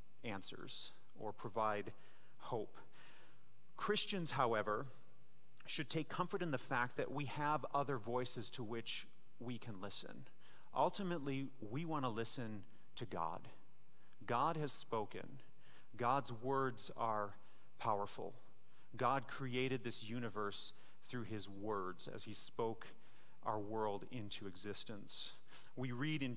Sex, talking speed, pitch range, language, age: male, 120 wpm, 105-135 Hz, English, 30-49